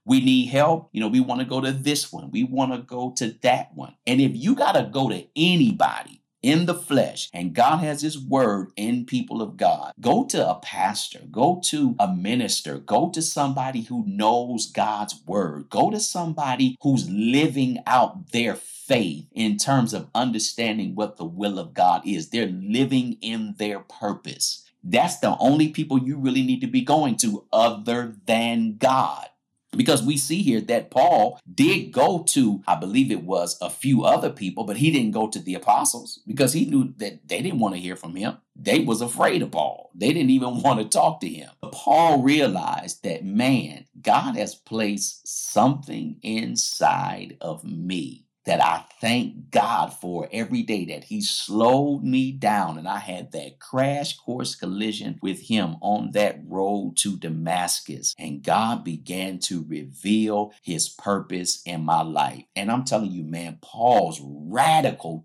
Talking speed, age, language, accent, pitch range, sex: 175 wpm, 50-69, English, American, 105-155 Hz, male